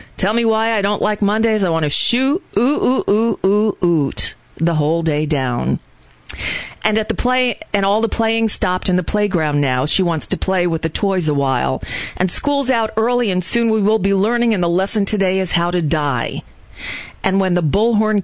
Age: 40-59